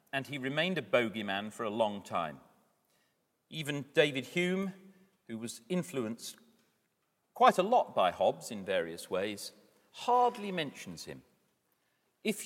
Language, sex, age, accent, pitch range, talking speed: English, male, 40-59, British, 120-175 Hz, 130 wpm